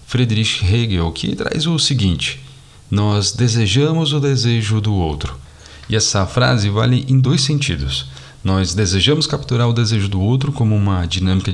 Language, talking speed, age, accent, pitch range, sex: Portuguese, 150 wpm, 40-59, Brazilian, 95-135 Hz, male